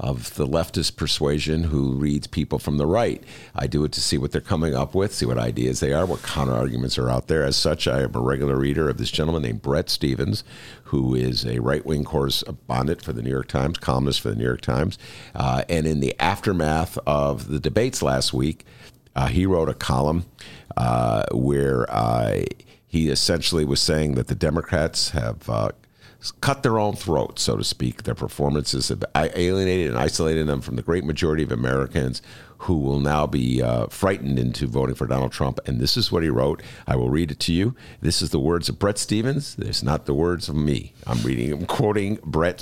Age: 50-69